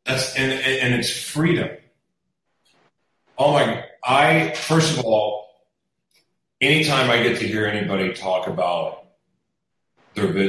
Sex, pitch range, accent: male, 105-150 Hz, American